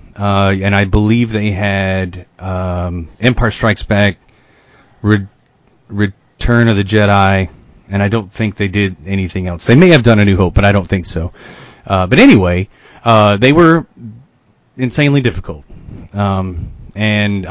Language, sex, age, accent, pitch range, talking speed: English, male, 30-49, American, 95-115 Hz, 155 wpm